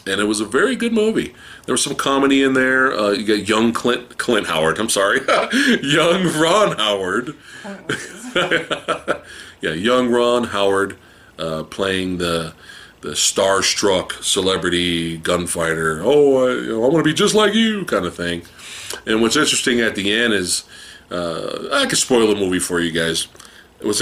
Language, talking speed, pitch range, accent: English, 165 wpm, 85-120 Hz, American